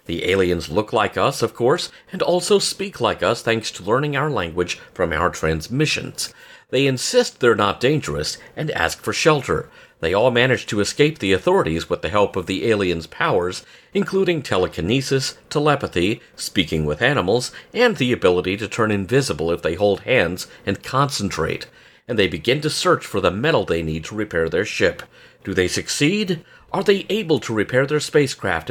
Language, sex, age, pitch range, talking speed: English, male, 50-69, 90-135 Hz, 180 wpm